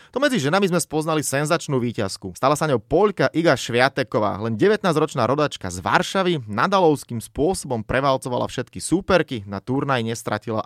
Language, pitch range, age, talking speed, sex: Slovak, 110-150 Hz, 30-49, 145 wpm, male